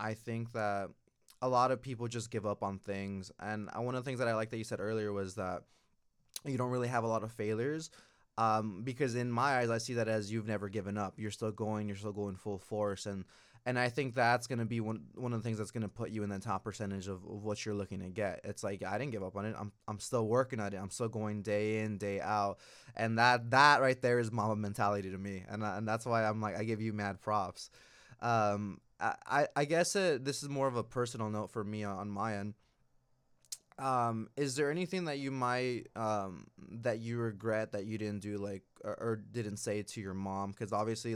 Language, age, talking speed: English, 20-39, 245 wpm